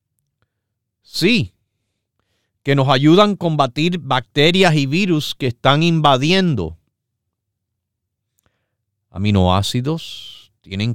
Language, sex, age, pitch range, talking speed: Spanish, male, 50-69, 105-145 Hz, 75 wpm